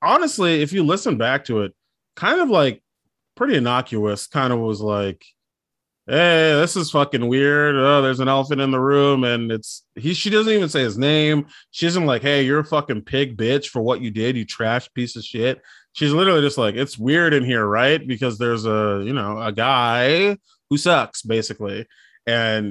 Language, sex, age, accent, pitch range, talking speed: English, male, 20-39, American, 115-150 Hz, 200 wpm